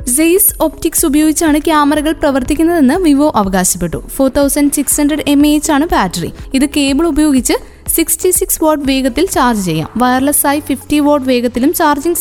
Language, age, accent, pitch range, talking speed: Malayalam, 20-39, native, 265-315 Hz, 150 wpm